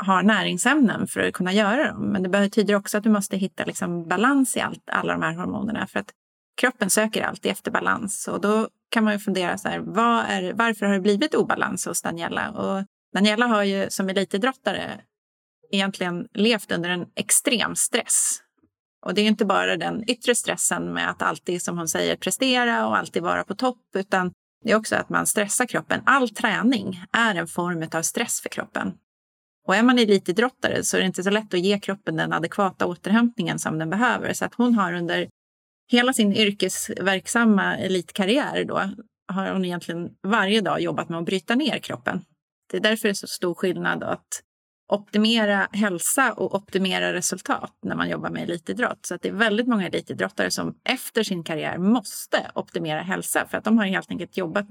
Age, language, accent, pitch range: 30-49, Swedish, native, 185-230 Hz